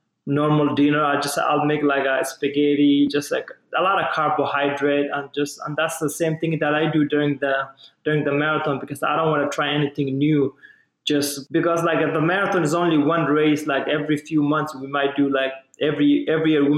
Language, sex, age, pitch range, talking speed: English, male, 20-39, 140-160 Hz, 210 wpm